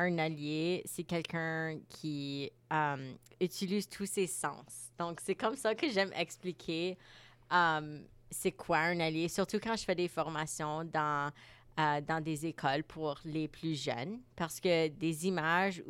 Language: French